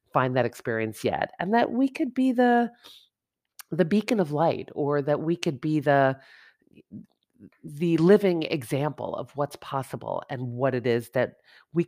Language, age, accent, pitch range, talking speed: English, 40-59, American, 135-185 Hz, 160 wpm